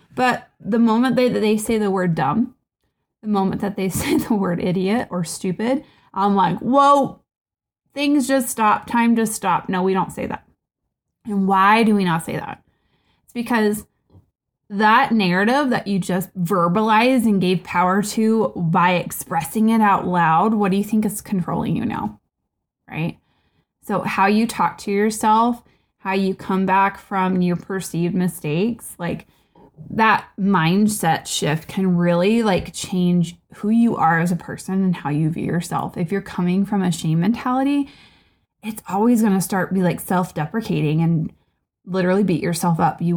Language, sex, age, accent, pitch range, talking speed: English, female, 20-39, American, 175-215 Hz, 165 wpm